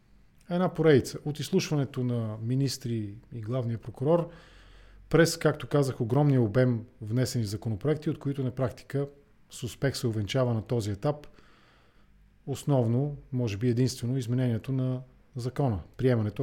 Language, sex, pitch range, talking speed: English, male, 115-155 Hz, 125 wpm